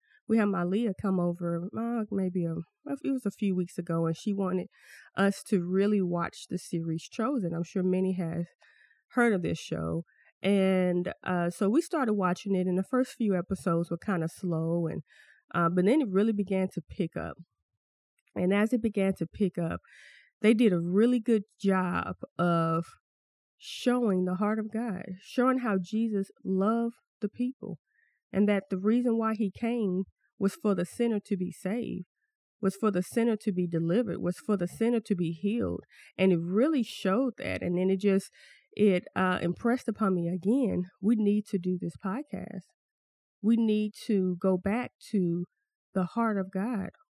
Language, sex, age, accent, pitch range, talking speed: English, female, 20-39, American, 175-220 Hz, 180 wpm